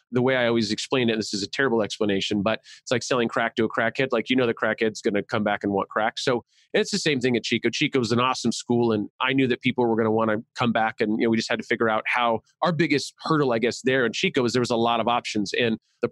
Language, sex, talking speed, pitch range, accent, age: English, male, 310 wpm, 115-135 Hz, American, 30-49